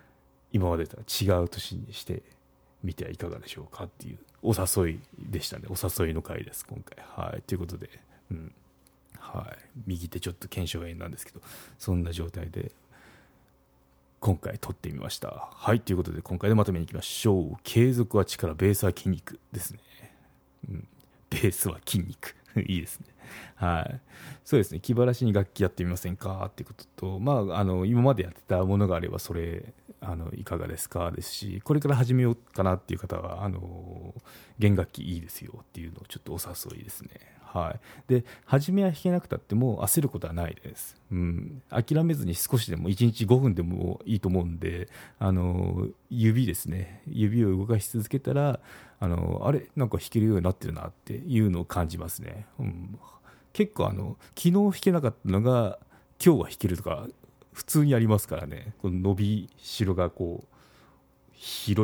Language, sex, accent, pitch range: Japanese, male, native, 90-120 Hz